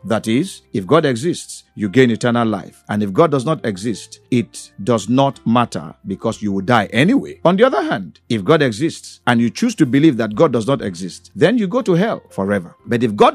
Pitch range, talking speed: 105-140 Hz, 225 wpm